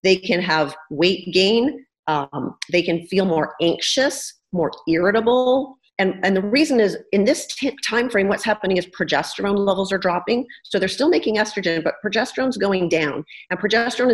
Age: 40-59